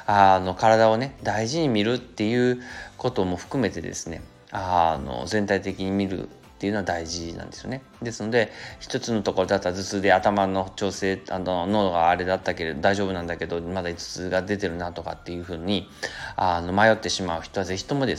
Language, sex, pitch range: Japanese, male, 90-105 Hz